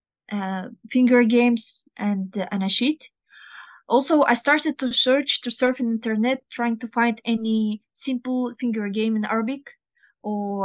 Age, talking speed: 20-39, 145 wpm